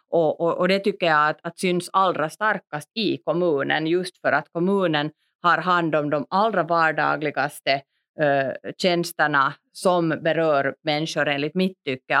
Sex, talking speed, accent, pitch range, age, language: female, 150 wpm, Finnish, 145-175 Hz, 30-49, Swedish